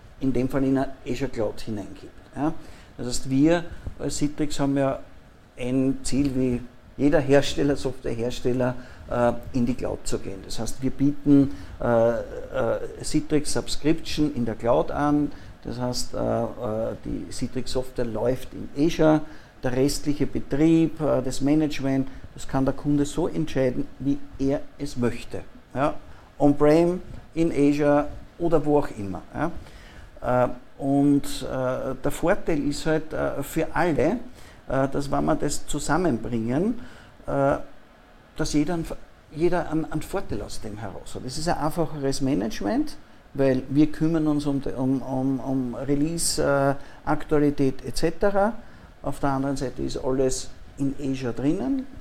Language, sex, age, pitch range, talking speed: German, male, 50-69, 125-150 Hz, 135 wpm